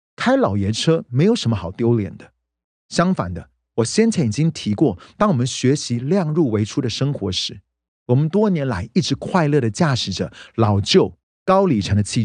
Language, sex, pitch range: Chinese, male, 95-155 Hz